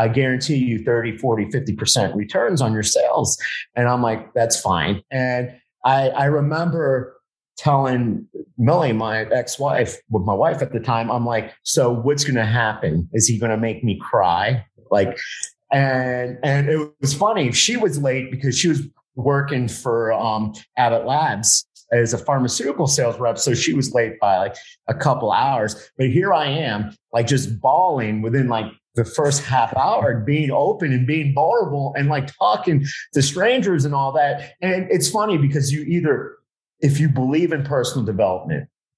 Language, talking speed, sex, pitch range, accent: English, 175 wpm, male, 115-145 Hz, American